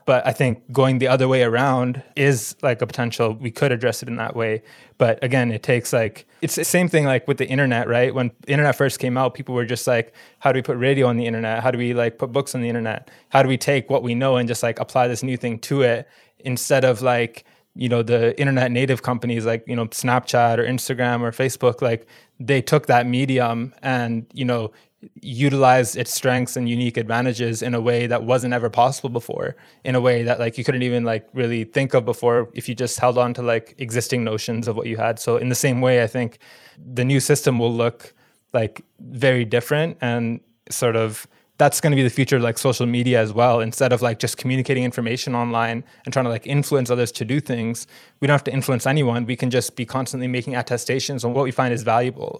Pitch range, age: 120-130 Hz, 20-39